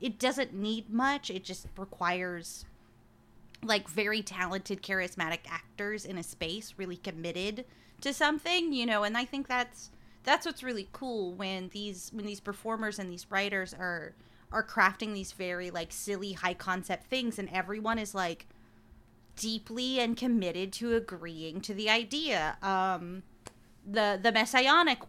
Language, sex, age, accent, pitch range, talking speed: English, female, 20-39, American, 175-225 Hz, 150 wpm